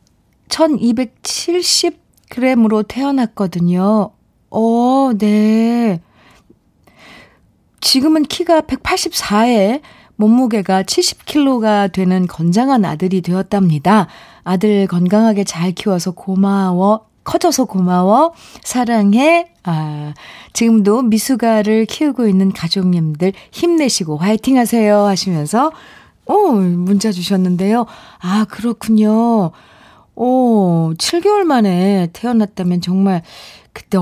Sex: female